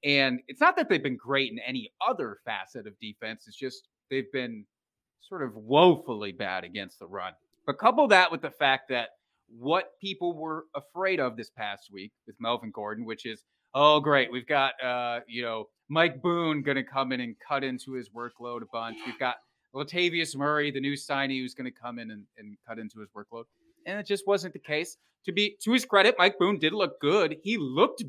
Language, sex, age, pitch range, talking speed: English, male, 30-49, 120-160 Hz, 210 wpm